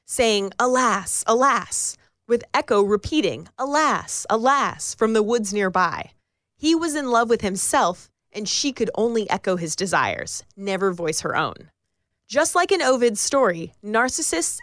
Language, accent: English, American